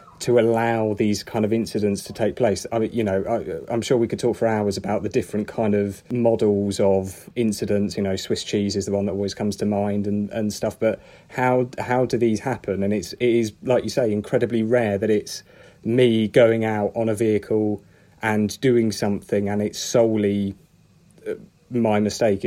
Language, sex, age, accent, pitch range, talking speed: English, male, 30-49, British, 100-120 Hz, 200 wpm